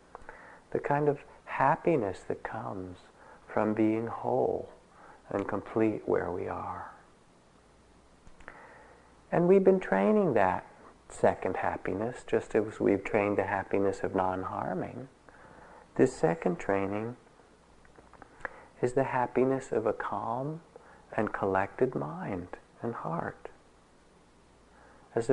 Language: English